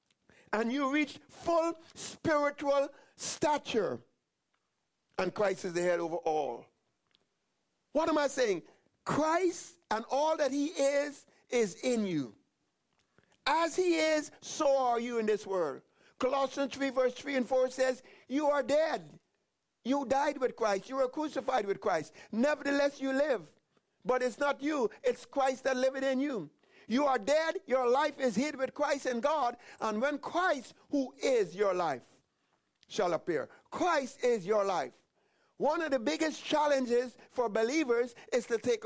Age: 50-69